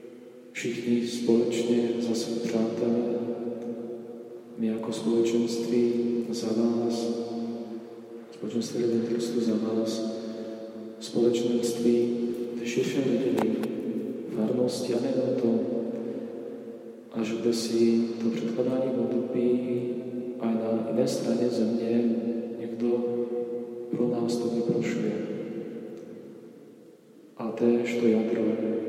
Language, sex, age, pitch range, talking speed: Slovak, male, 40-59, 110-120 Hz, 90 wpm